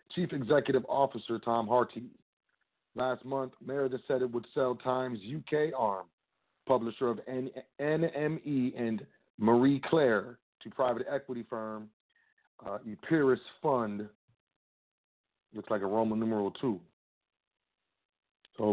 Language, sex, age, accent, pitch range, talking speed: English, male, 40-59, American, 115-140 Hz, 110 wpm